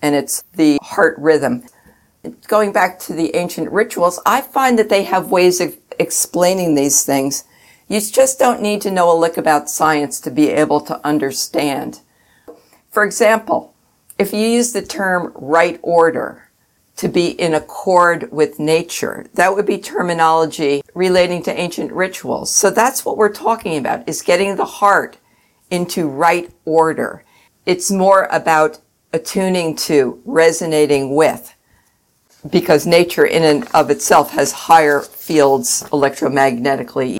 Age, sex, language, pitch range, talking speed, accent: 60-79, female, English, 155-190 Hz, 145 wpm, American